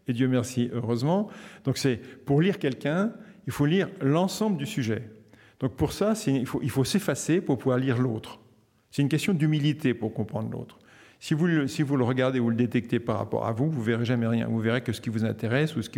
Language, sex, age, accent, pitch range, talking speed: French, male, 50-69, French, 120-160 Hz, 240 wpm